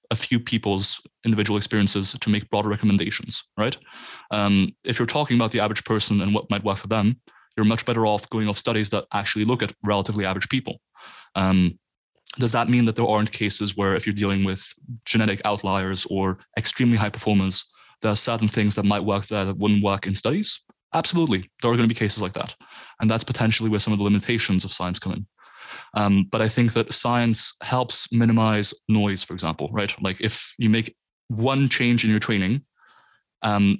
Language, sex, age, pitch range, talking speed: English, male, 20-39, 100-115 Hz, 200 wpm